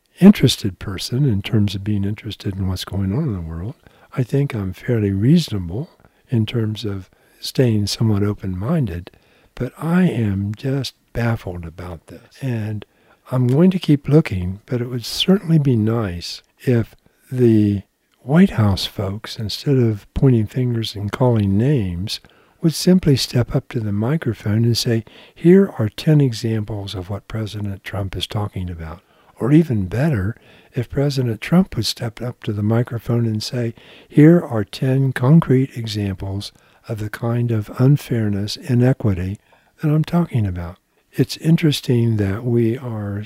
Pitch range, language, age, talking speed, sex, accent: 100-130 Hz, English, 60-79, 155 wpm, male, American